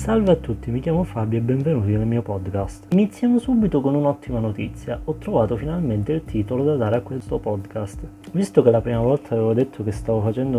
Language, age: Italian, 30-49